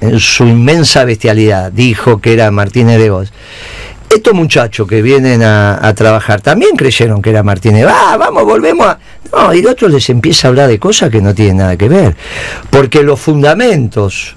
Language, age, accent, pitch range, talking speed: Spanish, 50-69, Argentinian, 110-150 Hz, 185 wpm